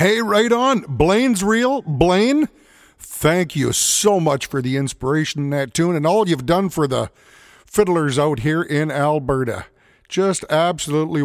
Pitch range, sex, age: 135-185 Hz, male, 50-69